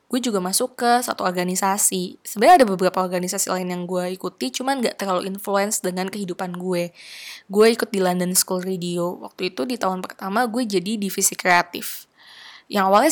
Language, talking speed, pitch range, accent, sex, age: Indonesian, 175 wpm, 180-210 Hz, native, female, 20-39